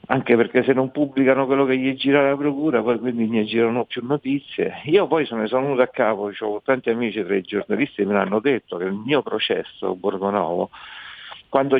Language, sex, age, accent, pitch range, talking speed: Italian, male, 60-79, native, 115-155 Hz, 215 wpm